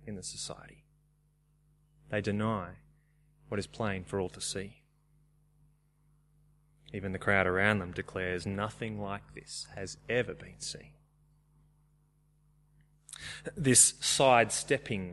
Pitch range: 115-150 Hz